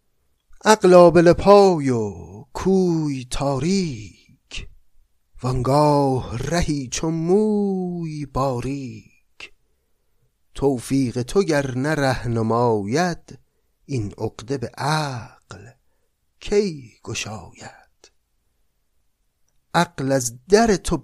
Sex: male